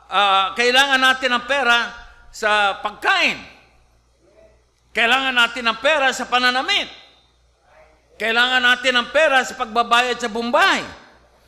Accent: Filipino